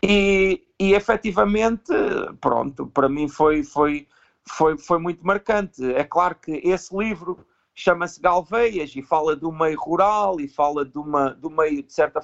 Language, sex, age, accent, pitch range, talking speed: Portuguese, male, 50-69, Portuguese, 155-190 Hz, 135 wpm